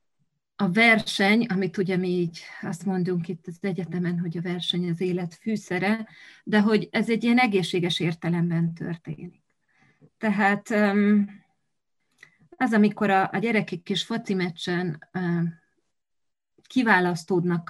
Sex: female